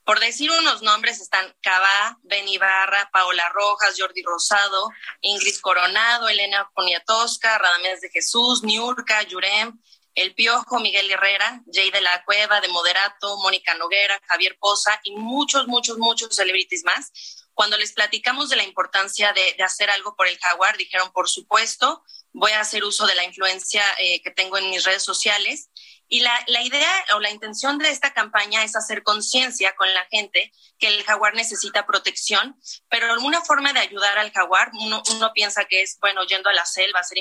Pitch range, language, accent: 190-225 Hz, Spanish, Mexican